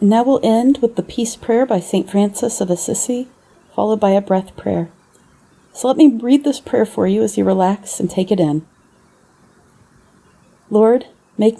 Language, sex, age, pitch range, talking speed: English, female, 40-59, 180-220 Hz, 175 wpm